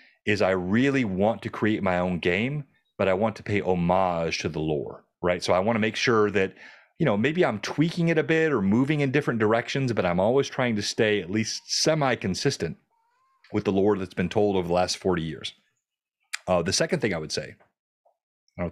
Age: 30-49